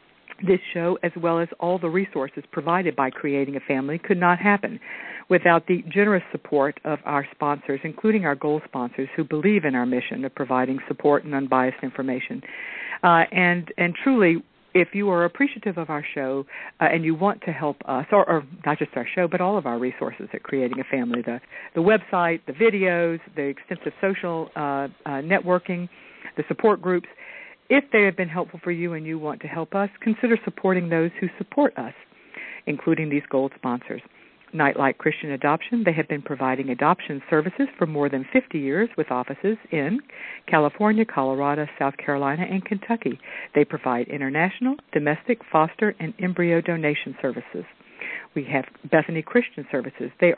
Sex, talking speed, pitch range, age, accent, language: female, 175 wpm, 145-190 Hz, 50-69, American, English